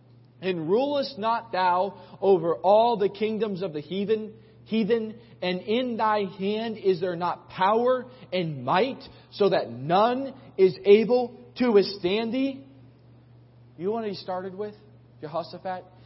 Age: 40-59